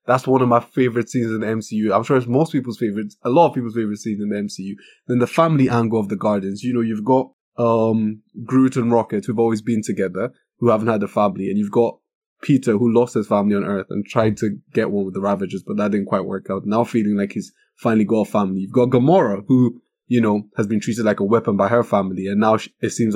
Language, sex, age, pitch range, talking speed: English, male, 20-39, 110-140 Hz, 255 wpm